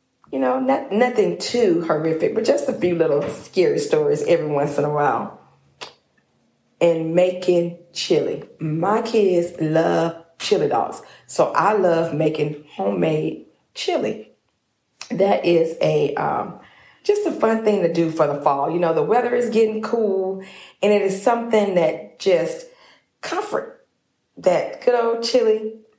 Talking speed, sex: 145 wpm, female